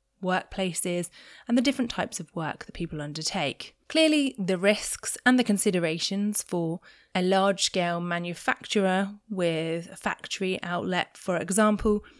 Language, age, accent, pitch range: English, 20-39, British, 165-210 Hz